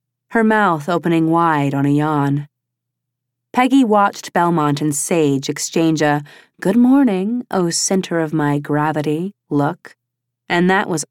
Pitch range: 145-215 Hz